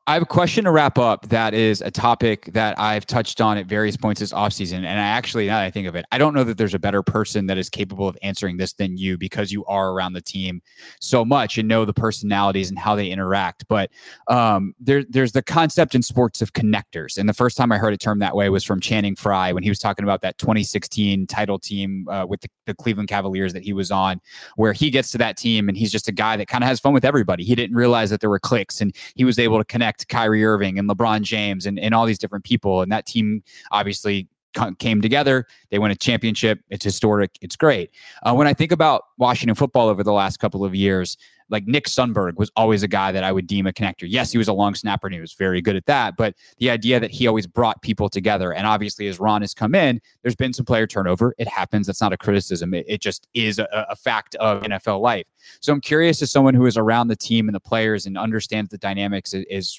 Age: 20-39